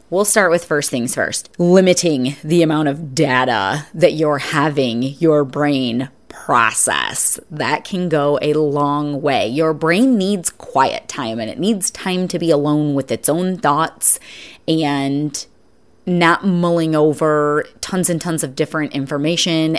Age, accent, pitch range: 30-49, American, 145-170 Hz